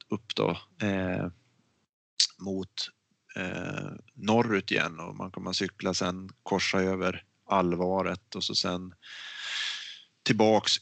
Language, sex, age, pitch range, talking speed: Swedish, male, 30-49, 95-110 Hz, 110 wpm